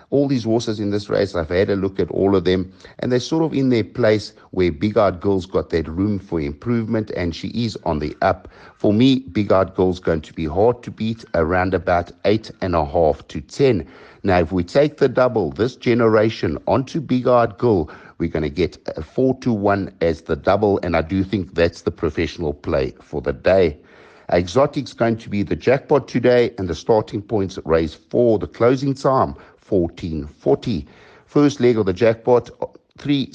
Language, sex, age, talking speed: English, male, 60-79, 195 wpm